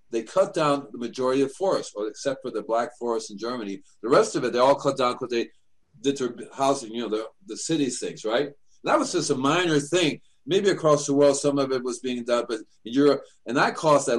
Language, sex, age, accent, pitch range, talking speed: English, male, 40-59, American, 115-145 Hz, 250 wpm